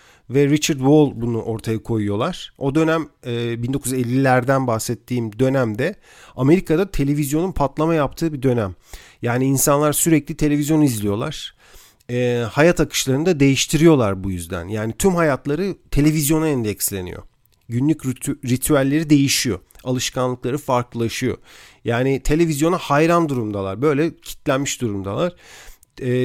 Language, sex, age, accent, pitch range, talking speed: Turkish, male, 40-59, native, 120-160 Hz, 110 wpm